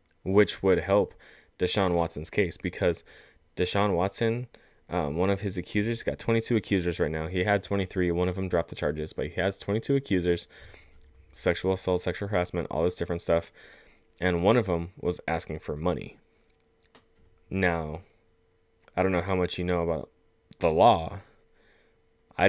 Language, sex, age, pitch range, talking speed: English, male, 20-39, 85-95 Hz, 165 wpm